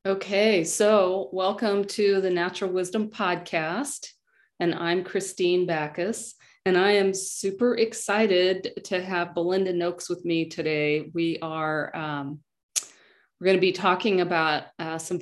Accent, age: American, 40-59